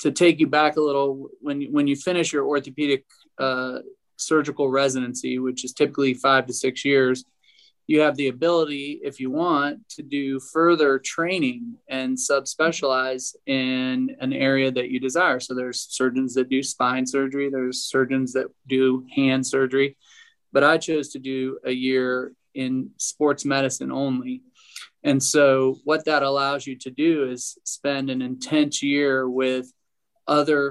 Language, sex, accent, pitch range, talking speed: English, male, American, 130-150 Hz, 155 wpm